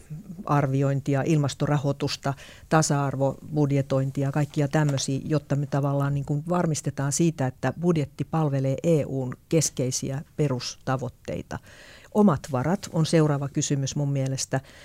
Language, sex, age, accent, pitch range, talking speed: Finnish, female, 50-69, native, 140-170 Hz, 110 wpm